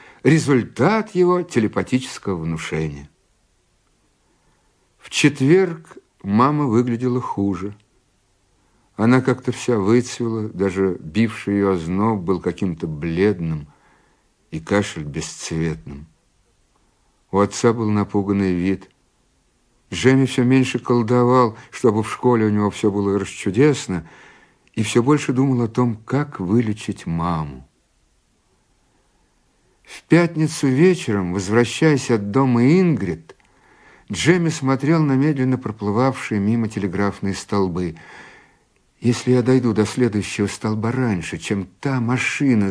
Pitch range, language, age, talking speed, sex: 95-130 Hz, Russian, 60-79, 105 wpm, male